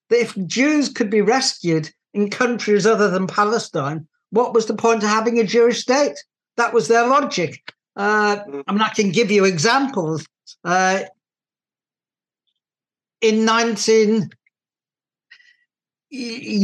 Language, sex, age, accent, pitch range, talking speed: English, male, 60-79, British, 190-230 Hz, 125 wpm